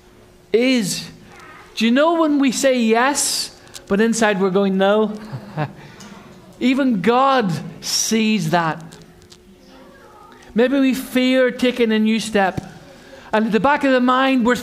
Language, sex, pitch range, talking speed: English, male, 200-270 Hz, 130 wpm